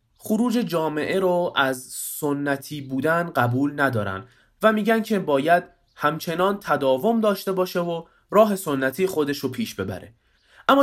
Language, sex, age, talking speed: Persian, male, 20-39, 135 wpm